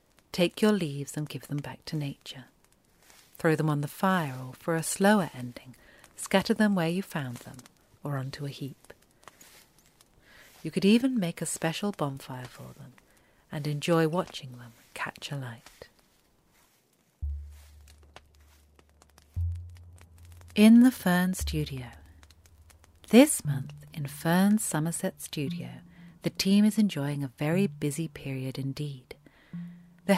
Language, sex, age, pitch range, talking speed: English, female, 40-59, 130-175 Hz, 130 wpm